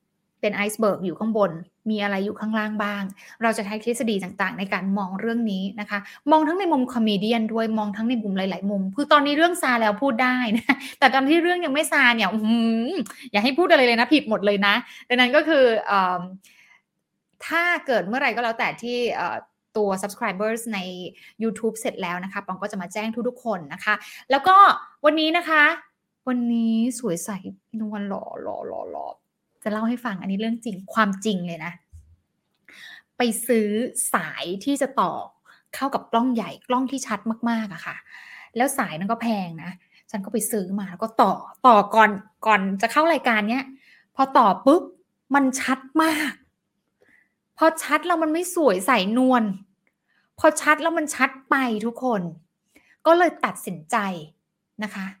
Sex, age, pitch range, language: female, 20-39, 205-265 Hz, English